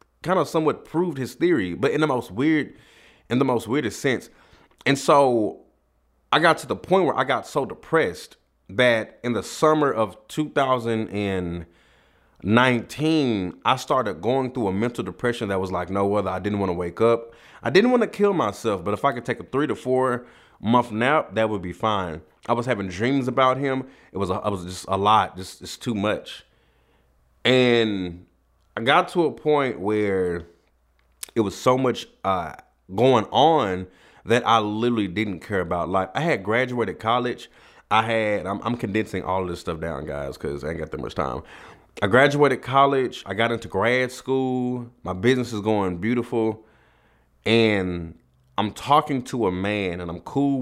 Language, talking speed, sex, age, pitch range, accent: English, 185 wpm, male, 30-49, 95-125 Hz, American